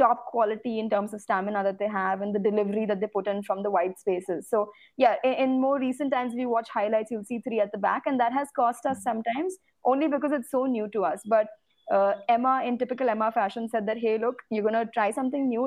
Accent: native